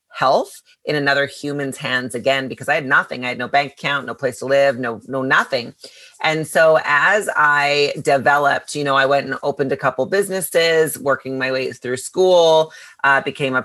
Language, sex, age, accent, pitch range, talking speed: English, female, 30-49, American, 135-150 Hz, 195 wpm